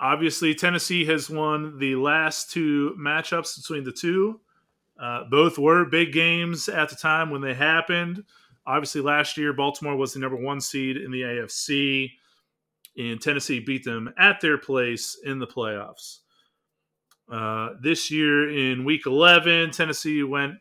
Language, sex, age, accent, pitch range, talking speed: English, male, 30-49, American, 130-160 Hz, 150 wpm